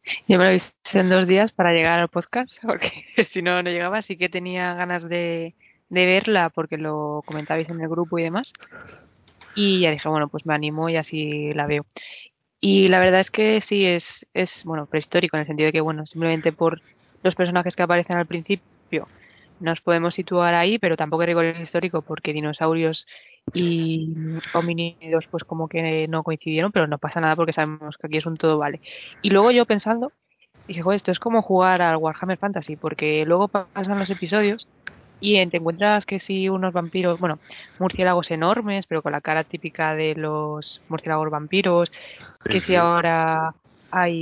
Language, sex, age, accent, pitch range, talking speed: Spanish, female, 20-39, Spanish, 160-185 Hz, 185 wpm